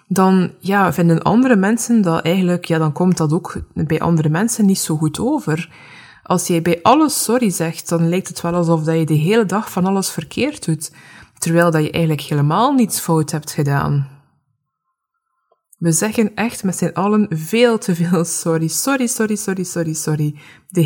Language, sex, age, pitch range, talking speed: Dutch, female, 20-39, 160-210 Hz, 185 wpm